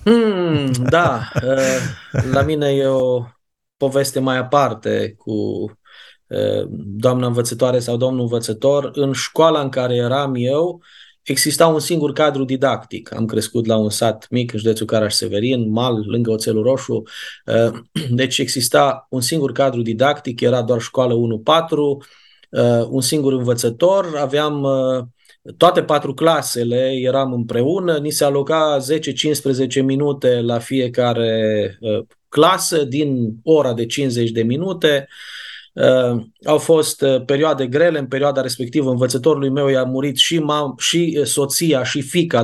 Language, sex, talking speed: Romanian, male, 130 wpm